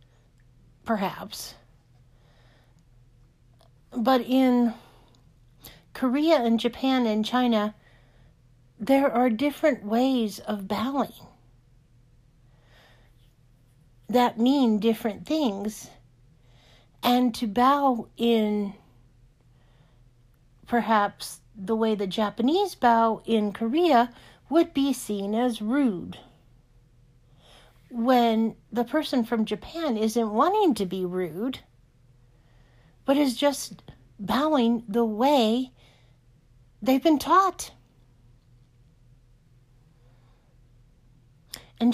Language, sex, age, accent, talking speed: English, female, 50-69, American, 80 wpm